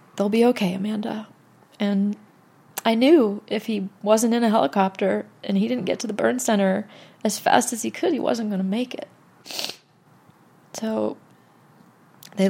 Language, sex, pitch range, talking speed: English, female, 210-275 Hz, 165 wpm